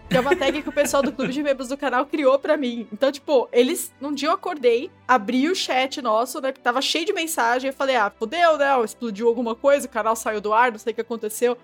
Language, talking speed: Portuguese, 265 wpm